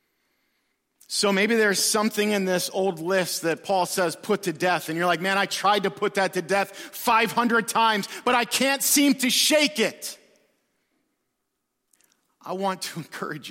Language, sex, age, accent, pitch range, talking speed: English, male, 50-69, American, 195-260 Hz, 170 wpm